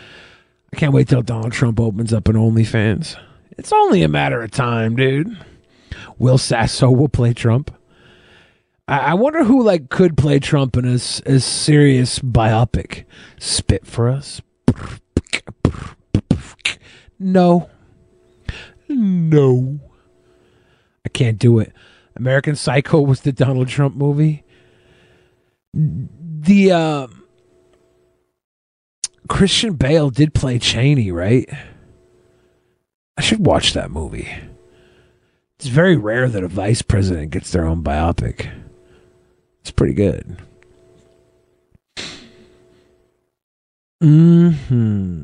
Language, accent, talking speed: English, American, 105 wpm